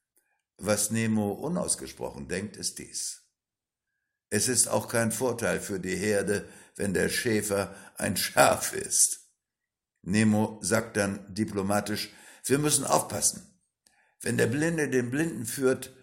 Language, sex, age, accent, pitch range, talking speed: German, male, 60-79, German, 95-120 Hz, 125 wpm